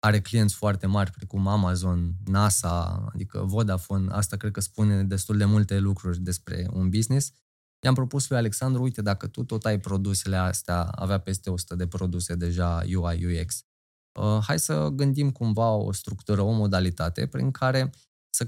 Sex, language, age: male, Romanian, 20-39